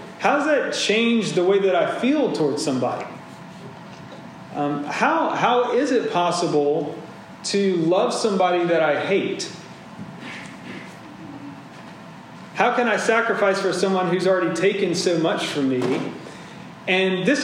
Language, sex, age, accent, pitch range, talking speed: English, male, 40-59, American, 165-205 Hz, 130 wpm